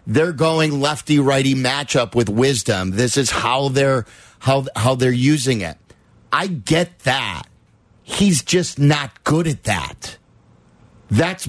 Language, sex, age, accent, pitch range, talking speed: English, male, 40-59, American, 135-180 Hz, 130 wpm